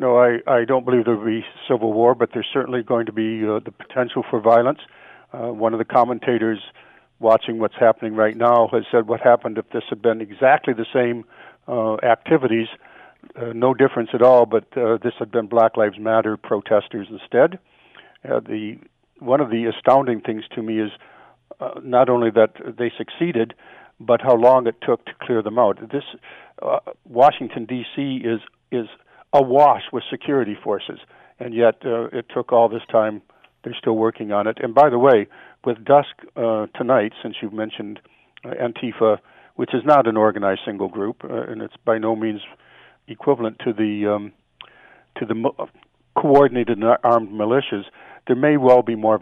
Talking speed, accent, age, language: 185 wpm, American, 60-79, English